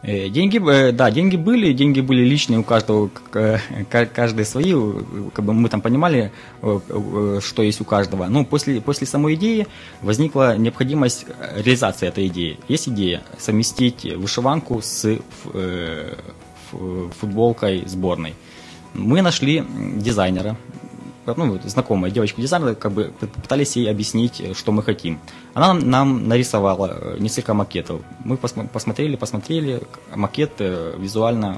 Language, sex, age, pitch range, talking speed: Russian, male, 20-39, 95-125 Hz, 120 wpm